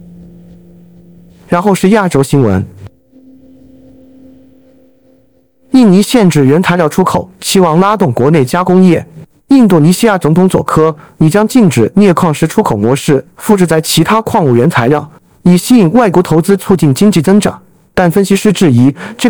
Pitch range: 150-200 Hz